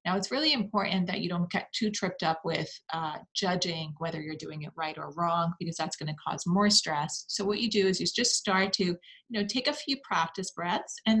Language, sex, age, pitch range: English, female, 30-49, 155-185 Hz